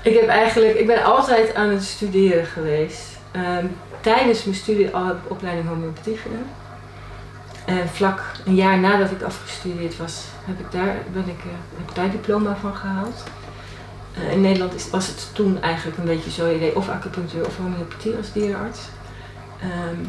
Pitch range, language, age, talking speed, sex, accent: 160-200 Hz, Dutch, 30-49, 165 wpm, female, Dutch